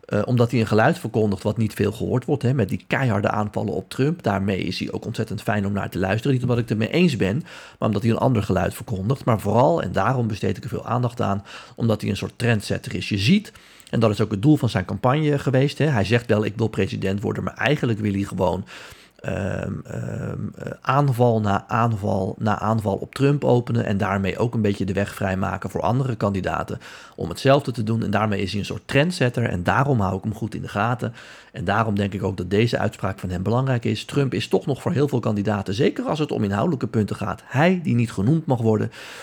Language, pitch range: Dutch, 100-125 Hz